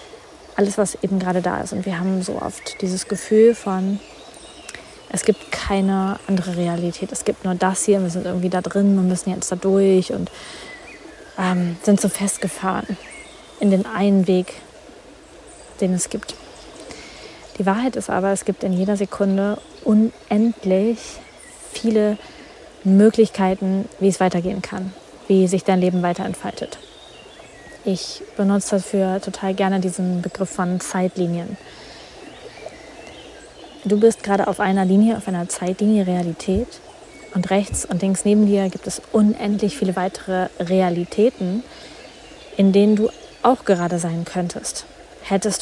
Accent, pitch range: German, 185-210 Hz